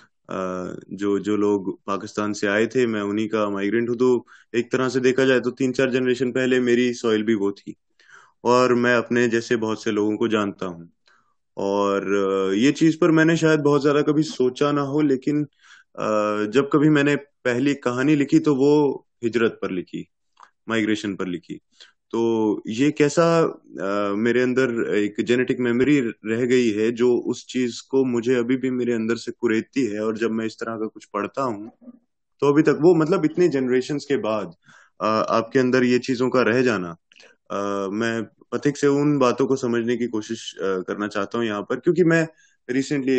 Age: 20-39